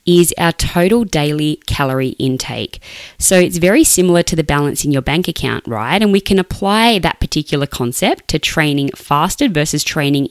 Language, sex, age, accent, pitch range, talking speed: English, female, 20-39, Australian, 140-190 Hz, 175 wpm